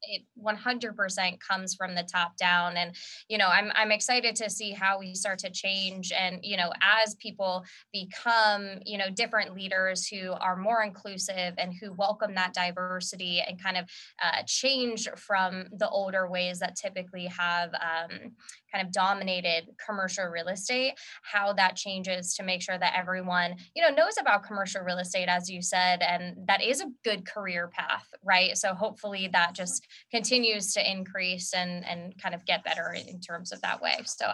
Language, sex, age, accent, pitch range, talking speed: English, female, 20-39, American, 185-230 Hz, 180 wpm